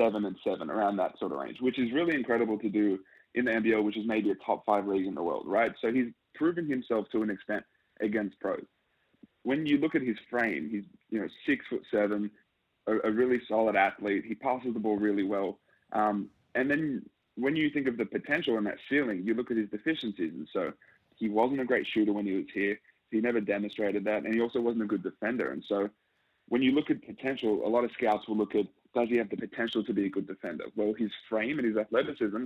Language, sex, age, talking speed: English, male, 20-39, 240 wpm